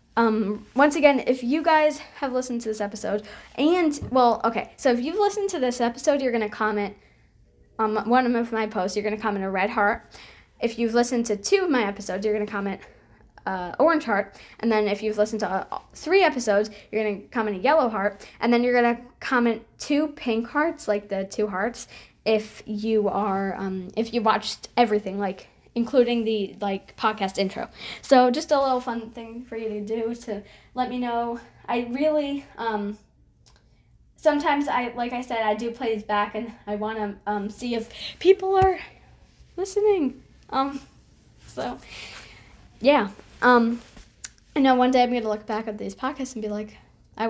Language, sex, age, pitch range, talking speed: English, female, 10-29, 210-255 Hz, 190 wpm